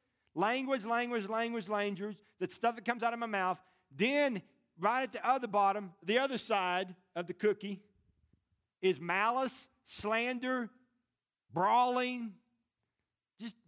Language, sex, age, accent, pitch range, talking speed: English, male, 50-69, American, 155-235 Hz, 125 wpm